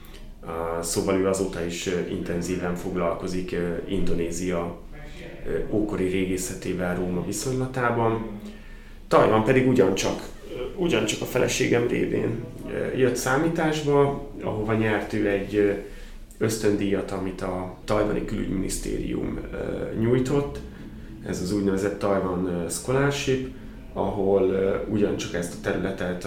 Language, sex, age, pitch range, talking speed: Hungarian, male, 30-49, 90-110 Hz, 110 wpm